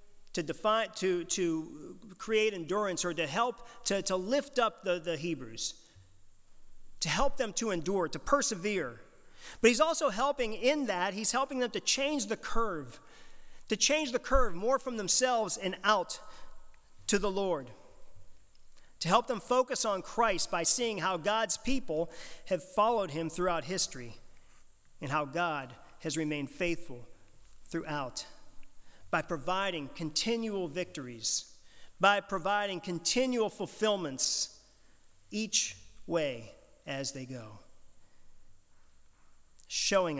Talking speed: 125 wpm